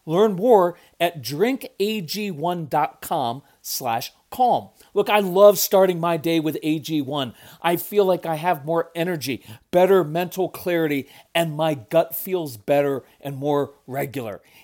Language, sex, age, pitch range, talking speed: English, male, 40-59, 145-195 Hz, 125 wpm